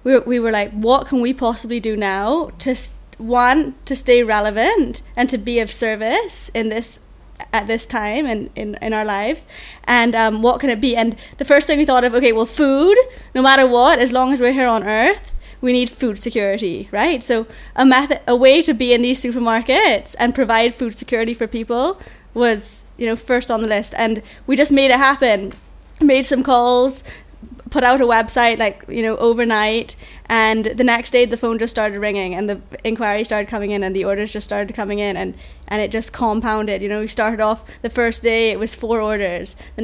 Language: English